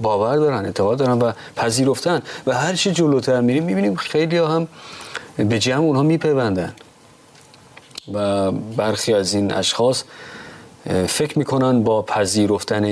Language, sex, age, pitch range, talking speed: Persian, male, 30-49, 100-140 Hz, 125 wpm